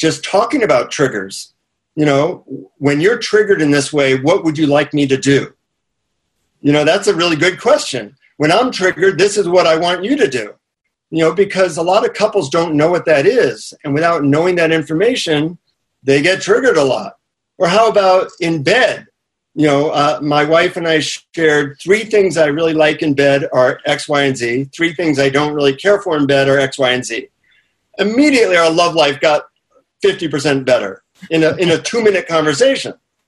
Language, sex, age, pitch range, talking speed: English, male, 50-69, 145-180 Hz, 200 wpm